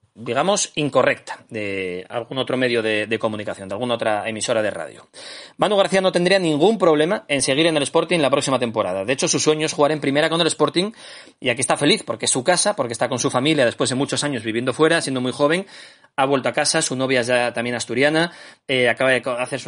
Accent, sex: Spanish, male